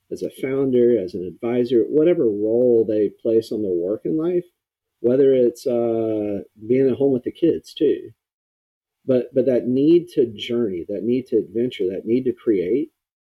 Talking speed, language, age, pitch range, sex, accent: 175 wpm, English, 40-59, 110-135 Hz, male, American